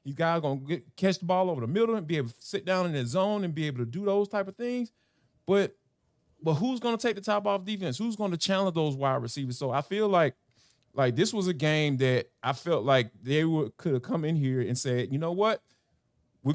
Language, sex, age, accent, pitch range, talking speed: English, male, 20-39, American, 135-190 Hz, 260 wpm